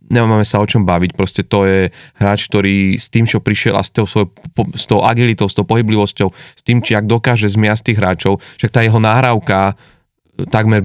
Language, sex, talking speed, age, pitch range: Slovak, male, 190 wpm, 30-49, 100-120 Hz